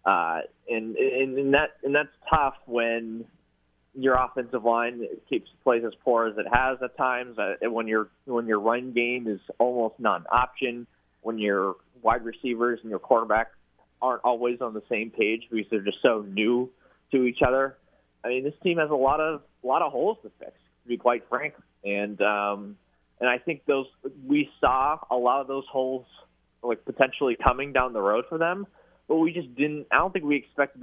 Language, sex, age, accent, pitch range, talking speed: English, male, 20-39, American, 105-130 Hz, 195 wpm